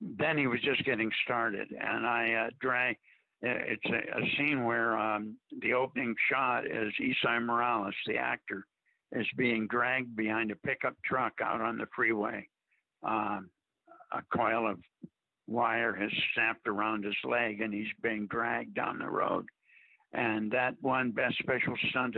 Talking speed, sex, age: 155 wpm, male, 60-79